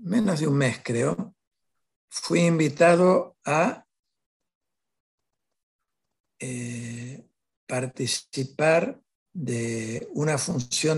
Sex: male